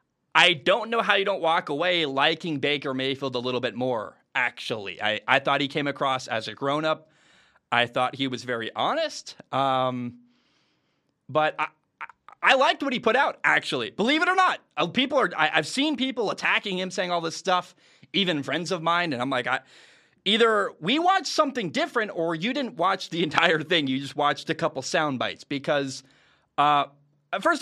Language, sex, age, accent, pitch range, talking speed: English, male, 30-49, American, 140-205 Hz, 190 wpm